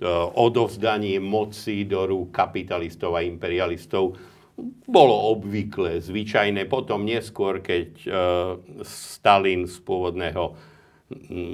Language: Slovak